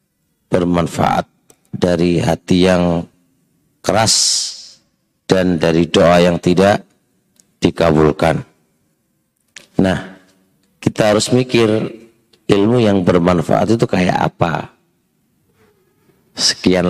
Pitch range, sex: 90-100 Hz, male